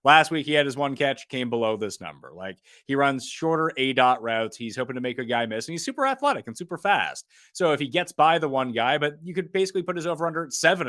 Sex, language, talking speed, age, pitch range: male, English, 275 wpm, 30-49, 125-160 Hz